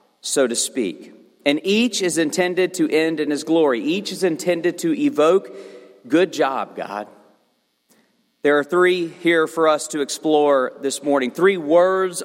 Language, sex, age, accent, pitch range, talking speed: English, male, 40-59, American, 145-185 Hz, 155 wpm